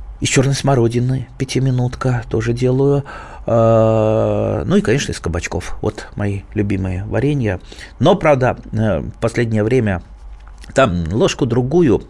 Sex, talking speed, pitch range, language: male, 110 wpm, 105-130 Hz, Russian